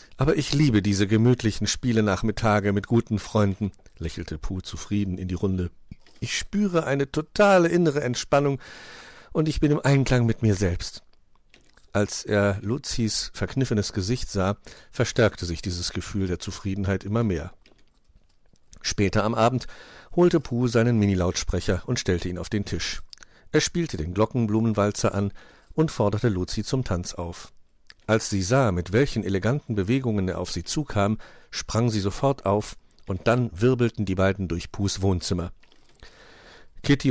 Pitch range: 95-130 Hz